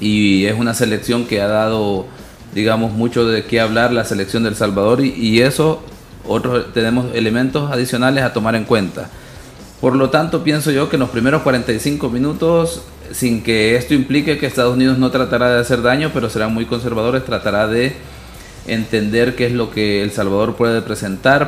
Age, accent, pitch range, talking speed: 30-49, Venezuelan, 105-125 Hz, 180 wpm